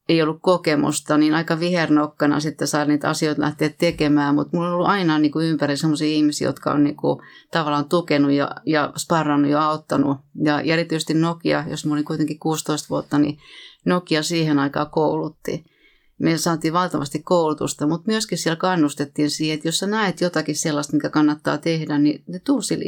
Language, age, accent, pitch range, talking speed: Finnish, 30-49, native, 150-170 Hz, 175 wpm